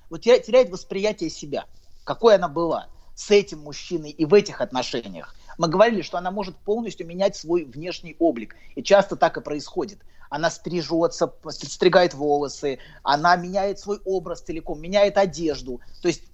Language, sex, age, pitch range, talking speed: Russian, male, 30-49, 150-200 Hz, 155 wpm